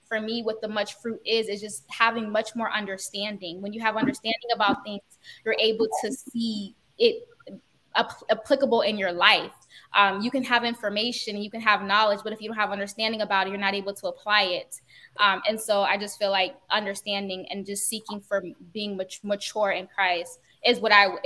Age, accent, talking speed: 10-29, American, 205 wpm